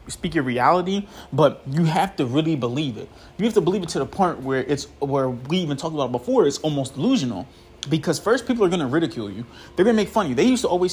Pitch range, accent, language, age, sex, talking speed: 140-185 Hz, American, English, 20-39, male, 270 wpm